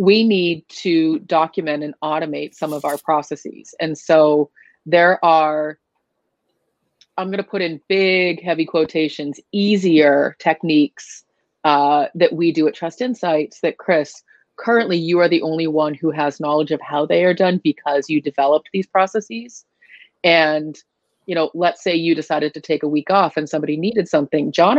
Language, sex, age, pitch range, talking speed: English, female, 30-49, 150-180 Hz, 165 wpm